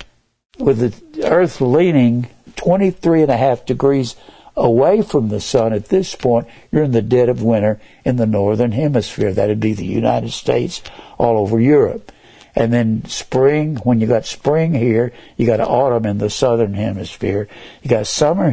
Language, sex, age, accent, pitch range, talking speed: English, male, 60-79, American, 110-145 Hz, 170 wpm